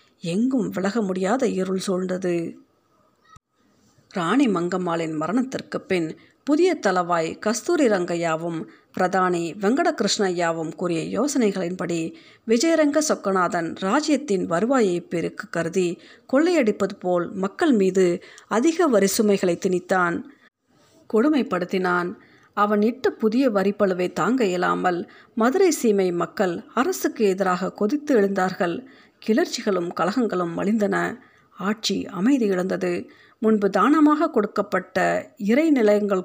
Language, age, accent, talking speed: Tamil, 50-69, native, 90 wpm